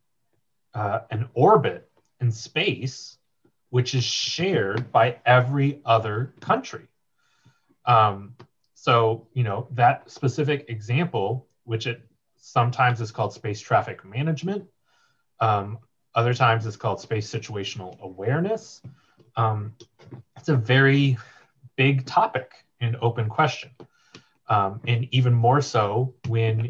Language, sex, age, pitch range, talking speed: English, male, 30-49, 110-130 Hz, 110 wpm